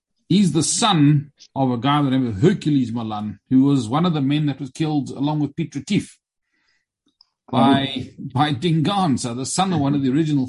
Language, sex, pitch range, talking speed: English, male, 110-145 Hz, 205 wpm